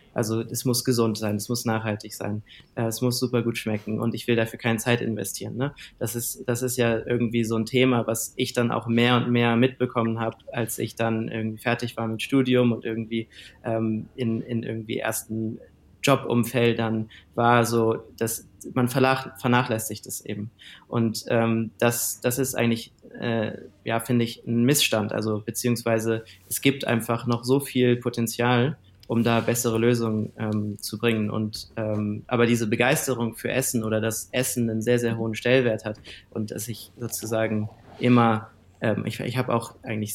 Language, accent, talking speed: German, German, 180 wpm